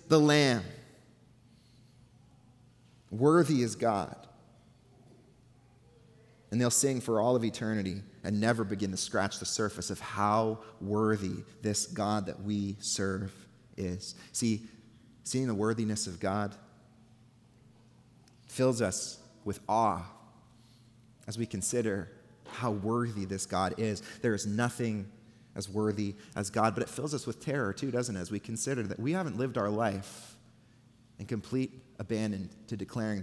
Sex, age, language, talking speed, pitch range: male, 30-49, English, 135 wpm, 100-125 Hz